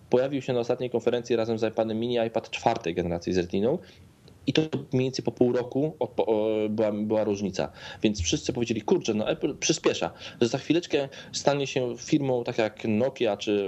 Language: Polish